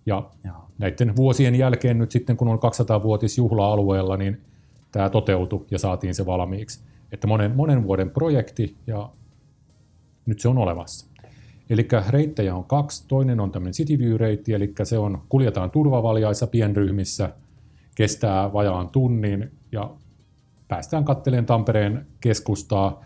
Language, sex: Finnish, male